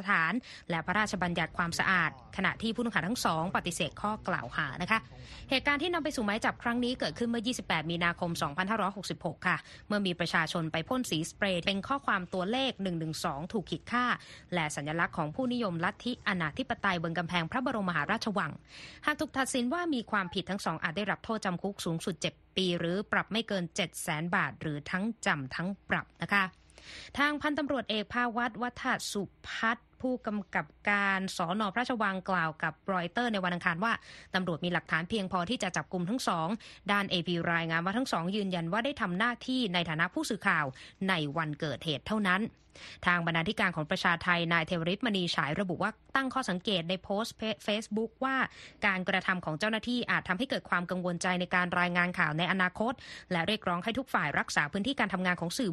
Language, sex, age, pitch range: Thai, female, 20-39, 175-225 Hz